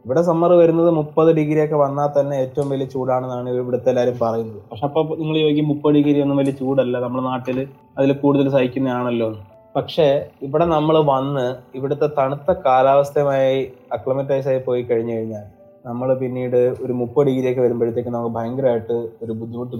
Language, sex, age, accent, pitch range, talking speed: Malayalam, male, 20-39, native, 120-140 Hz, 150 wpm